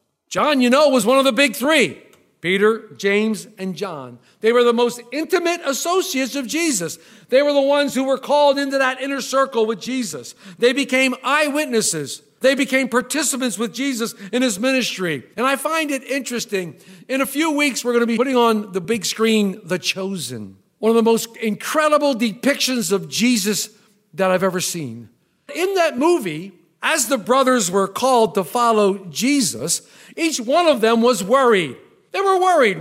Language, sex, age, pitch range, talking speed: English, male, 50-69, 215-300 Hz, 175 wpm